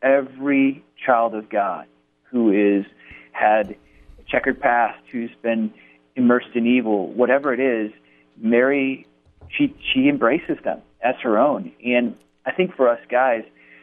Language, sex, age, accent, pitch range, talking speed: English, male, 40-59, American, 100-125 Hz, 140 wpm